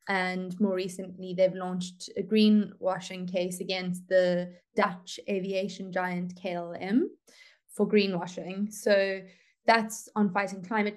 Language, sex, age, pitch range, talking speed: English, female, 20-39, 180-200 Hz, 115 wpm